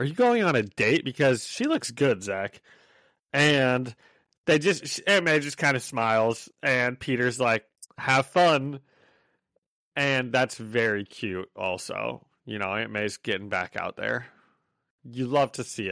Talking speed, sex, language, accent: 160 wpm, male, English, American